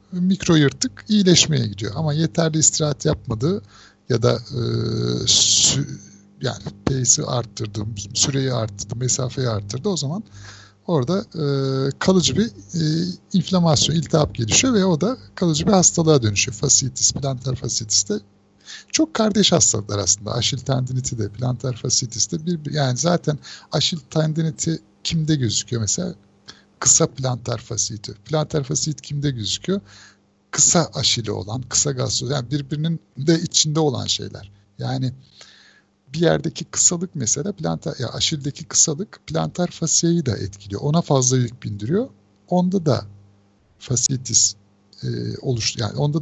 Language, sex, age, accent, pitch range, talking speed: Turkish, male, 60-79, native, 110-160 Hz, 125 wpm